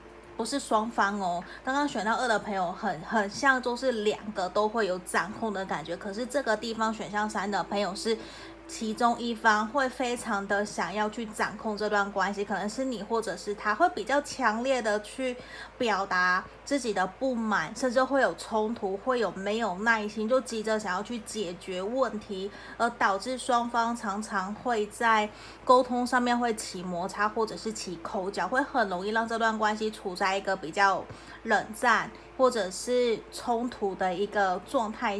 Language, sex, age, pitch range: Chinese, female, 20-39, 200-240 Hz